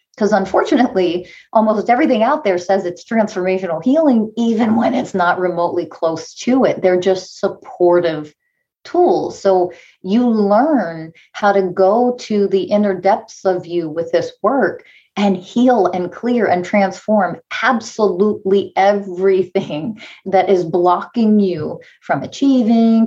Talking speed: 135 wpm